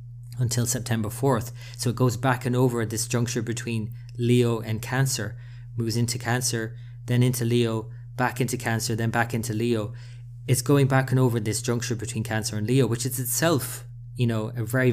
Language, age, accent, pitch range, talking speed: English, 20-39, Irish, 115-125 Hz, 190 wpm